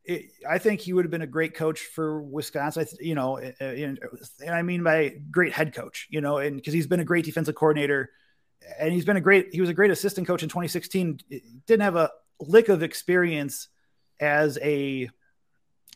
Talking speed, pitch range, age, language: 195 wpm, 145-175 Hz, 30-49, English